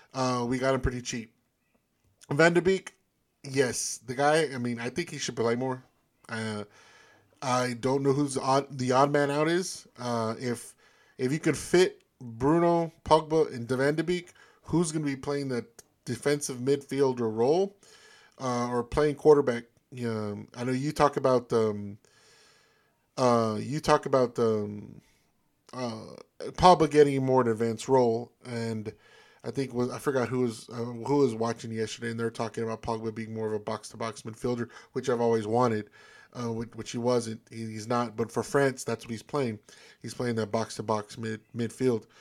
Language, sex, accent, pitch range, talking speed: English, male, American, 115-140 Hz, 180 wpm